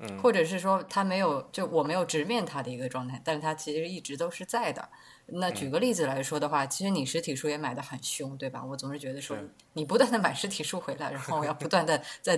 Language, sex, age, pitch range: Chinese, female, 20-39, 140-190 Hz